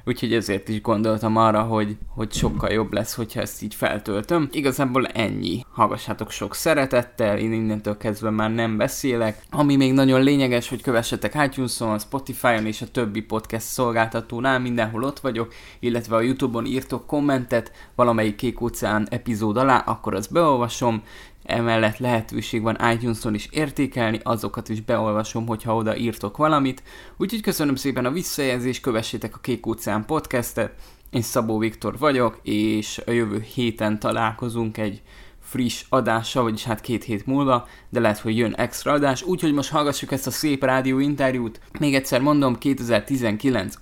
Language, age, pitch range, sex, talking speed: Hungarian, 20-39, 110-130 Hz, male, 150 wpm